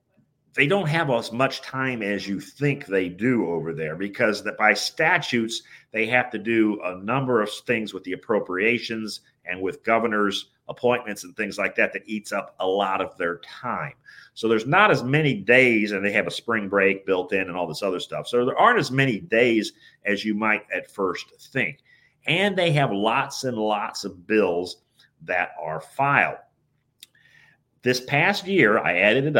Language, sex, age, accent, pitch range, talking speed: English, male, 40-59, American, 105-140 Hz, 190 wpm